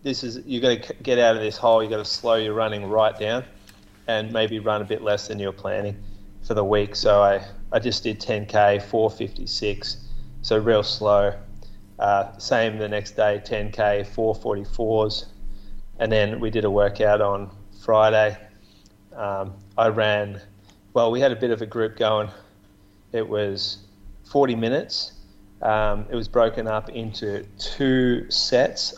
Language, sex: English, male